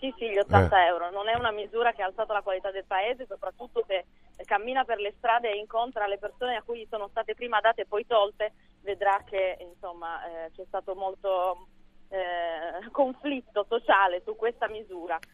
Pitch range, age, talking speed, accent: 185-230 Hz, 20-39, 190 wpm, native